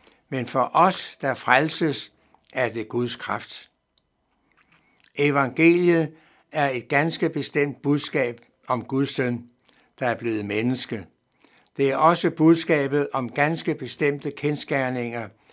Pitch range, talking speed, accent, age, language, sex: 120-150 Hz, 115 wpm, native, 60-79, Danish, male